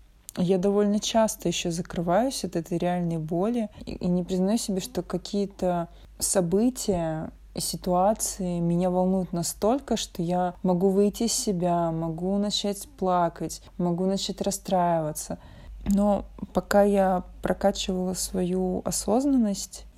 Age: 20-39